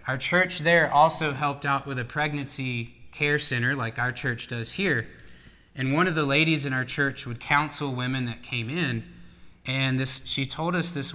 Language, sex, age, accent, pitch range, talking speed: English, male, 20-39, American, 120-150 Hz, 195 wpm